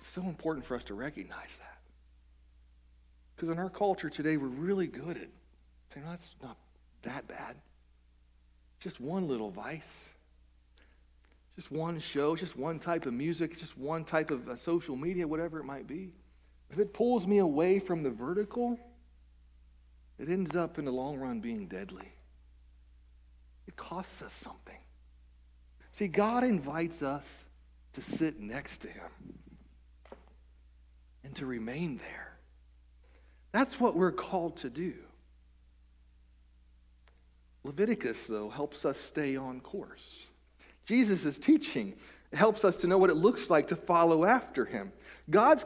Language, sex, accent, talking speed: English, male, American, 140 wpm